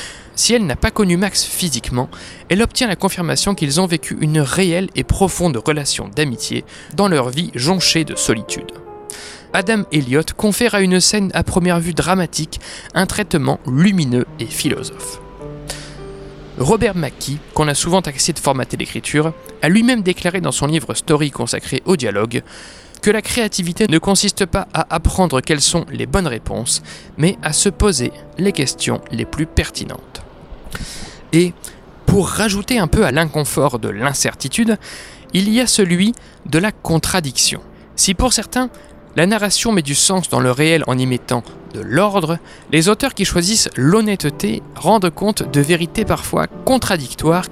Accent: French